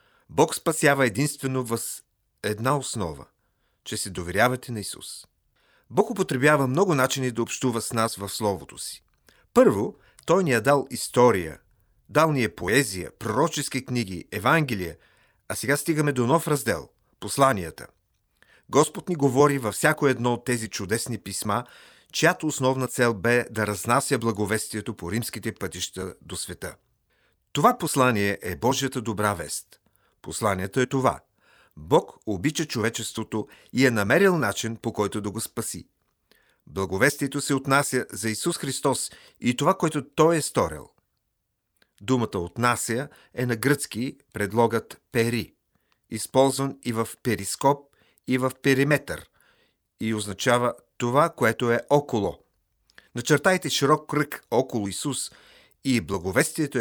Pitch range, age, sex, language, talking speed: 105-140 Hz, 40-59, male, Bulgarian, 135 wpm